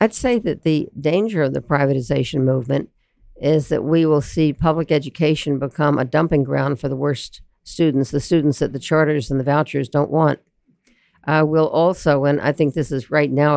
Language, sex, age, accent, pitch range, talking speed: English, female, 60-79, American, 135-155 Hz, 195 wpm